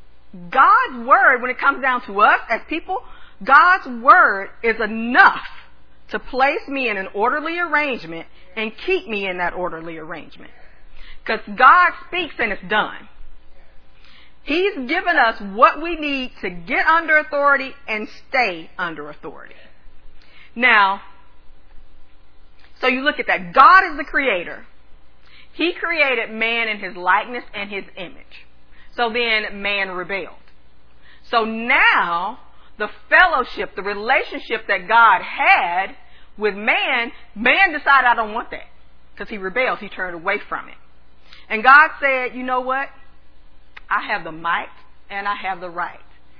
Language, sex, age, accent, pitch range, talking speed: English, female, 40-59, American, 180-275 Hz, 145 wpm